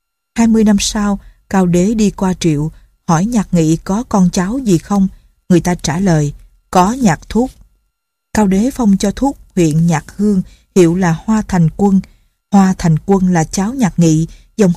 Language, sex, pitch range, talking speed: Vietnamese, female, 160-195 Hz, 185 wpm